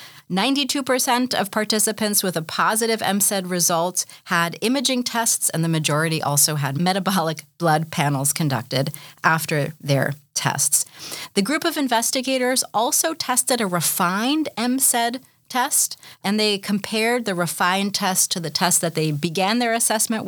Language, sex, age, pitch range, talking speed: English, female, 40-59, 160-215 Hz, 135 wpm